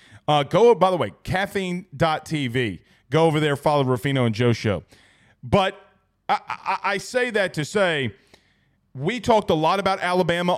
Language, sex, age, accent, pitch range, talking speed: English, male, 30-49, American, 150-205 Hz, 160 wpm